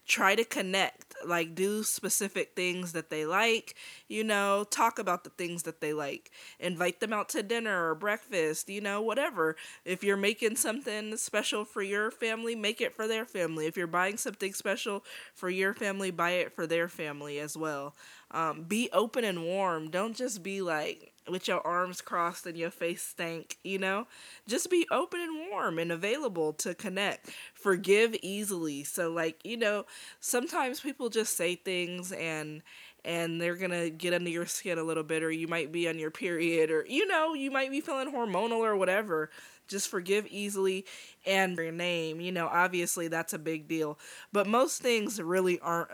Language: English